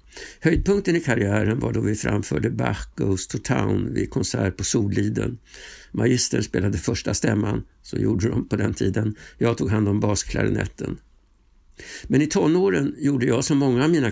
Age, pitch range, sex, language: 60-79, 105-130 Hz, male, Swedish